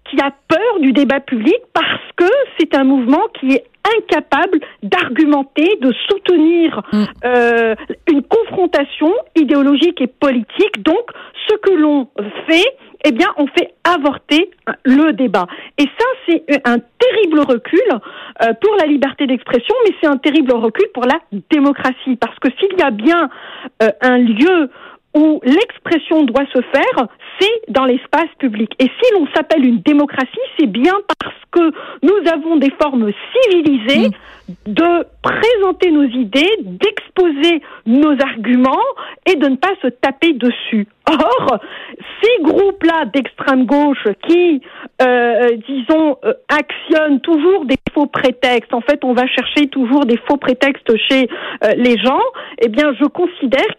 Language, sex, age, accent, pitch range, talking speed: French, female, 50-69, French, 260-355 Hz, 145 wpm